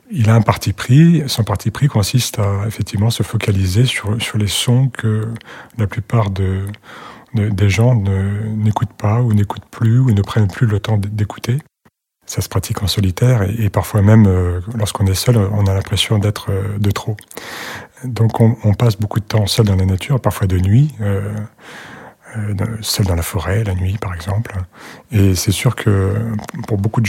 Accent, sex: French, male